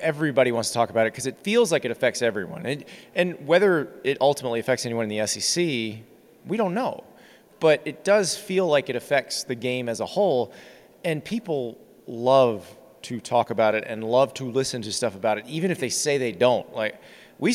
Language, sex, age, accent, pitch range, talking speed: English, male, 30-49, American, 120-150 Hz, 210 wpm